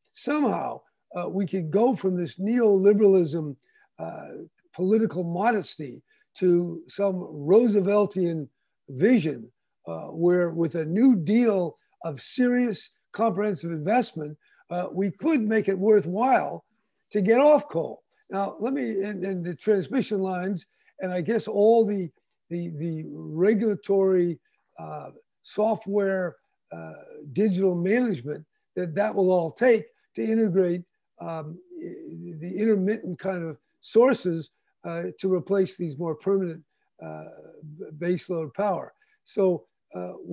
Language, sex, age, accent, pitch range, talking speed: English, male, 60-79, American, 165-220 Hz, 120 wpm